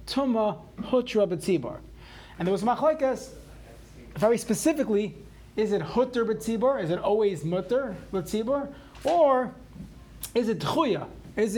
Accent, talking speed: American, 110 wpm